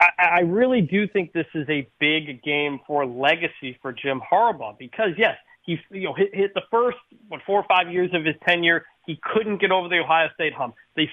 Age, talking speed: 30-49, 215 wpm